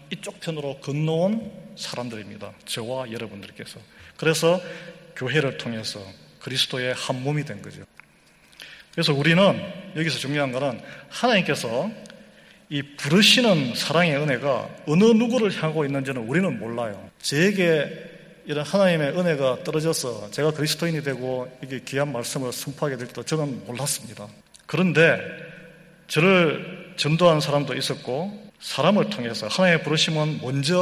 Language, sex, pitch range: Korean, male, 135-175 Hz